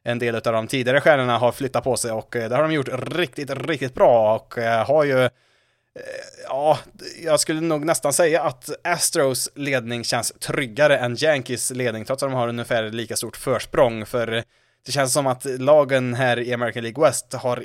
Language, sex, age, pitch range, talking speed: Swedish, male, 20-39, 120-155 Hz, 185 wpm